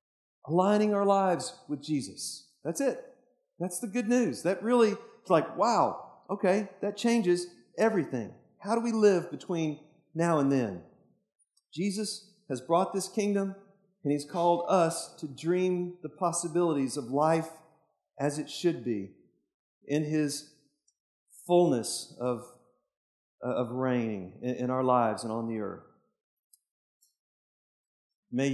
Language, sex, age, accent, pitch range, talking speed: English, male, 40-59, American, 140-200 Hz, 130 wpm